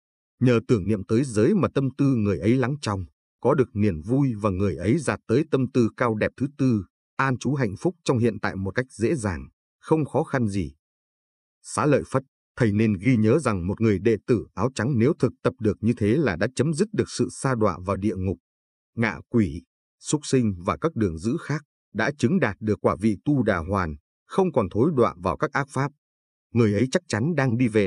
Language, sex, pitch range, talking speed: Vietnamese, male, 100-130 Hz, 230 wpm